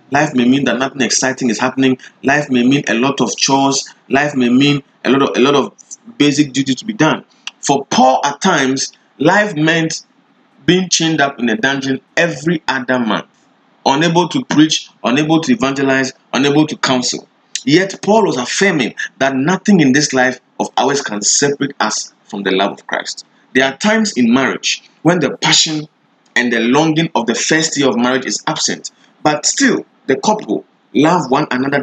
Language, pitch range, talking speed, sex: English, 125-175 Hz, 185 wpm, male